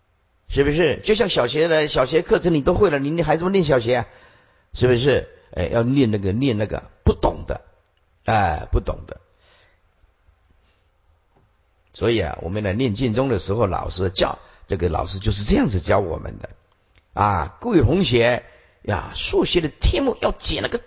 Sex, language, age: male, Chinese, 50-69